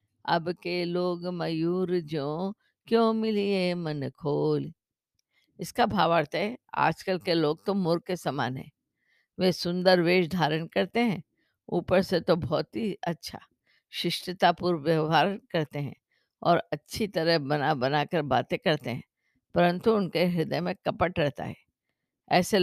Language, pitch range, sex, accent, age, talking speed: Hindi, 160-195 Hz, female, native, 50-69, 145 wpm